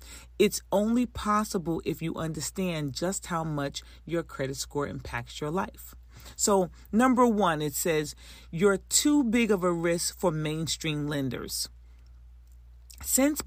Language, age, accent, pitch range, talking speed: English, 40-59, American, 135-185 Hz, 135 wpm